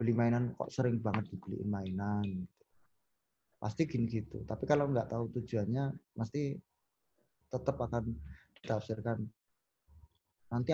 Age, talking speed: 20-39, 115 wpm